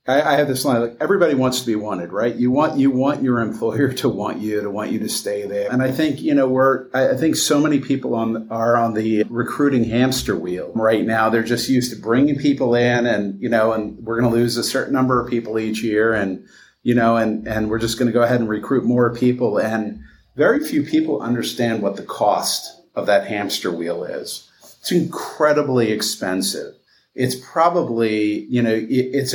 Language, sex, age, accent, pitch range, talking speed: English, male, 50-69, American, 110-130 Hz, 215 wpm